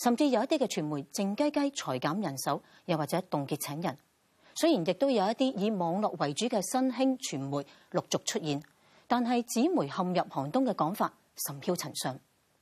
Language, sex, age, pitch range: Chinese, female, 40-59, 155-230 Hz